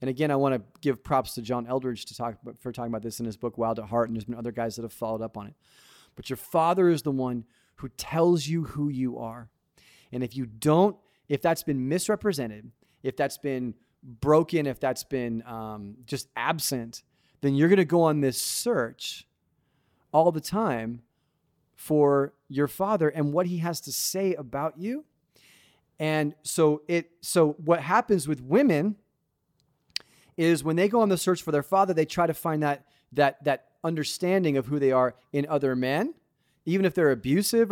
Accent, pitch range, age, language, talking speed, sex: American, 125-165 Hz, 30-49, English, 195 wpm, male